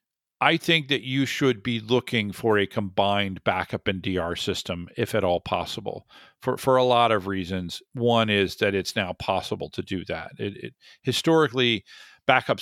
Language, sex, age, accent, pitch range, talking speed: English, male, 50-69, American, 100-125 Hz, 175 wpm